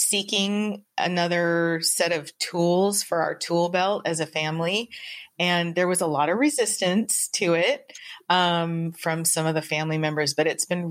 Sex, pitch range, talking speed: female, 155-195 Hz, 170 wpm